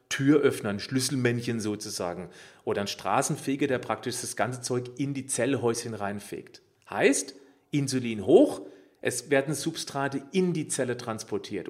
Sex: male